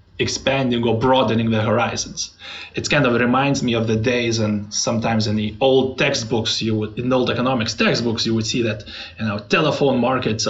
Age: 30-49